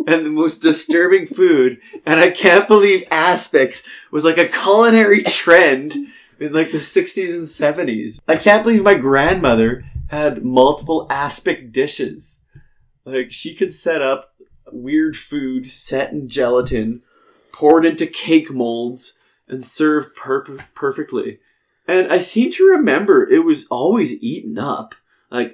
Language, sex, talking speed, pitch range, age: English, male, 140 wpm, 125-195 Hz, 20-39